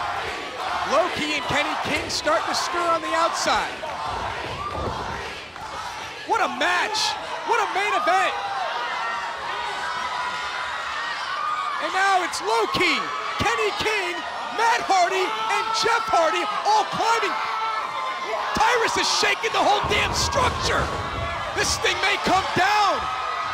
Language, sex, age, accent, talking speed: English, male, 30-49, American, 105 wpm